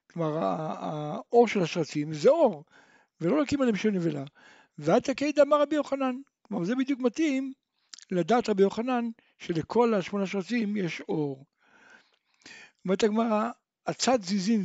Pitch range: 175-240 Hz